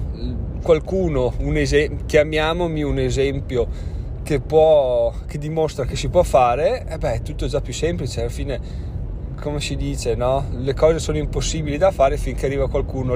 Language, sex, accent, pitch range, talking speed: Italian, male, native, 120-150 Hz, 165 wpm